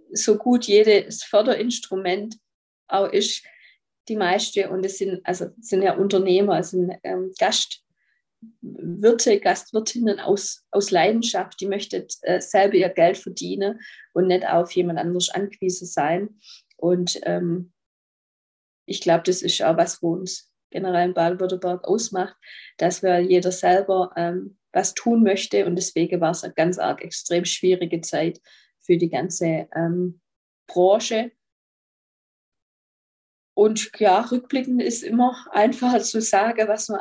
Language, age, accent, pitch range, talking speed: German, 20-39, German, 180-220 Hz, 135 wpm